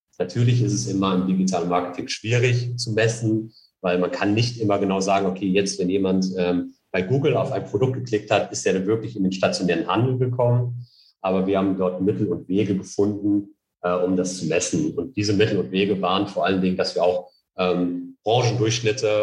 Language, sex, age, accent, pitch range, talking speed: German, male, 40-59, German, 95-110 Hz, 205 wpm